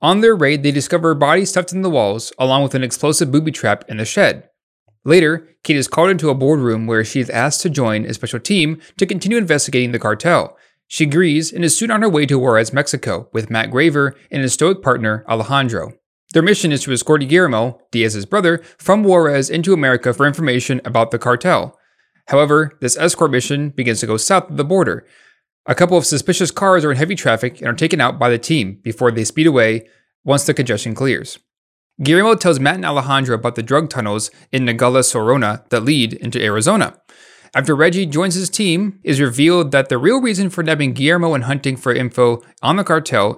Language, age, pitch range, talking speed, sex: English, 30-49, 125-165 Hz, 205 wpm, male